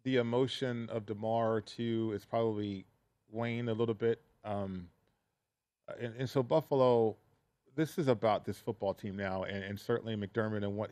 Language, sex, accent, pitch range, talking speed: English, male, American, 105-120 Hz, 160 wpm